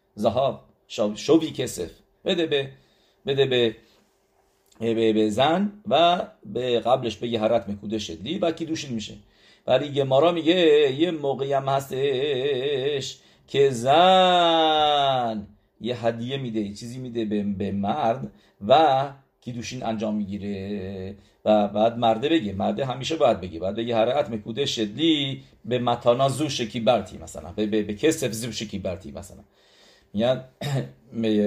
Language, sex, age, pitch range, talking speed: English, male, 50-69, 110-155 Hz, 130 wpm